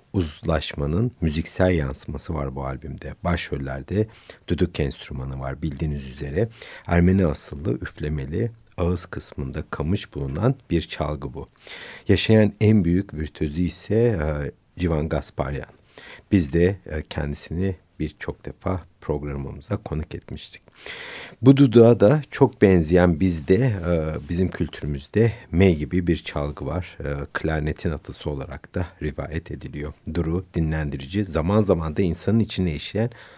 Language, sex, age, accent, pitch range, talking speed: Turkish, male, 60-79, native, 75-100 Hz, 120 wpm